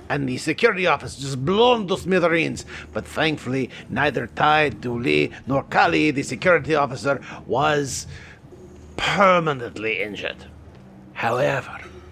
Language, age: English, 50-69